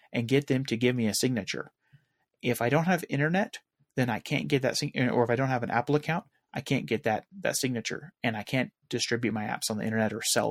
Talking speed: 245 wpm